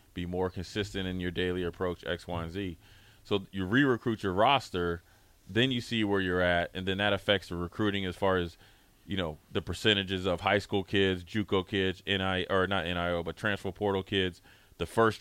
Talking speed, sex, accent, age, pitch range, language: 195 wpm, male, American, 30-49, 95-110 Hz, English